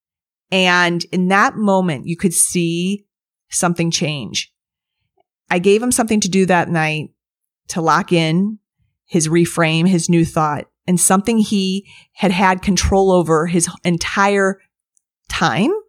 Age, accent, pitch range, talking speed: 30-49, American, 165-195 Hz, 130 wpm